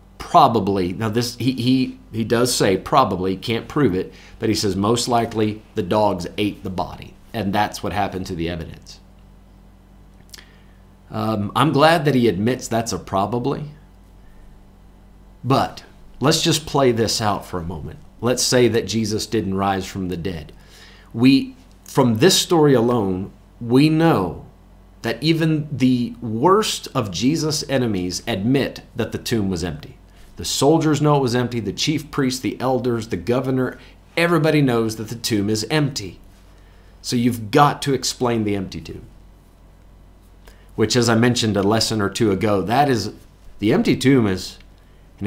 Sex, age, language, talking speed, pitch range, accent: male, 40-59, English, 160 wpm, 95-125 Hz, American